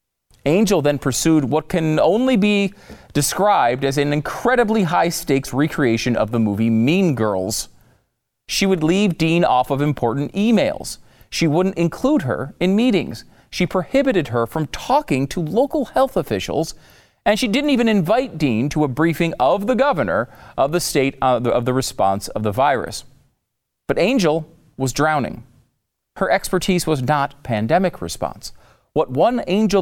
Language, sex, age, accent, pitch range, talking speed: English, male, 40-59, American, 125-195 Hz, 155 wpm